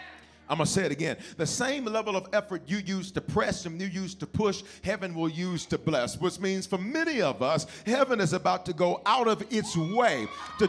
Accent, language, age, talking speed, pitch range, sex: American, English, 40-59, 230 wpm, 190-240 Hz, male